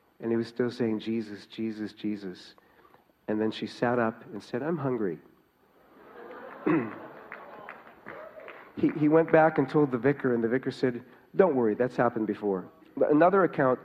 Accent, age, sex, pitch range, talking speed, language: American, 50-69, male, 110-130 Hz, 160 wpm, English